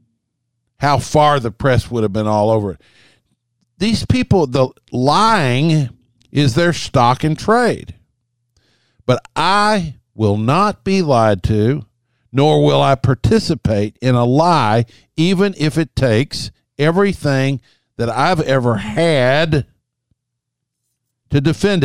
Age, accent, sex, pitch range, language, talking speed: 50-69, American, male, 115-145 Hz, English, 120 wpm